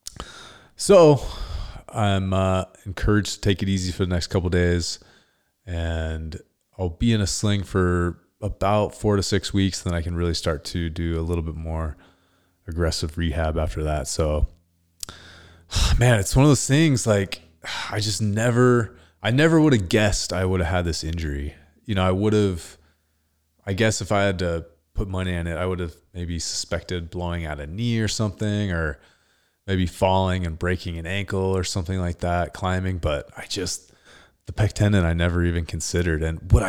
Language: English